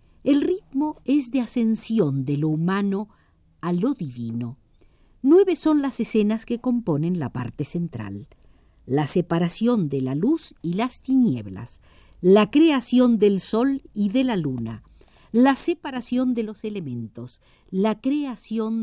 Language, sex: Spanish, female